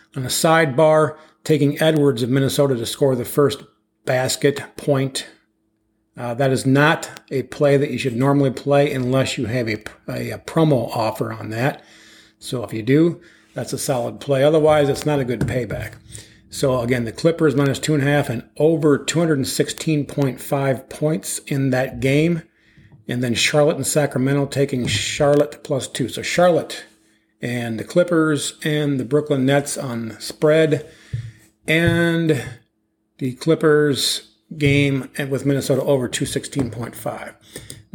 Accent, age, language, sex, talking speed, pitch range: American, 40-59, English, male, 140 wpm, 120-150 Hz